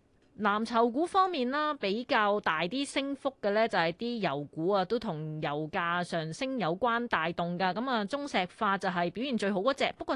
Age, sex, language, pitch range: 20-39, female, Chinese, 175-235 Hz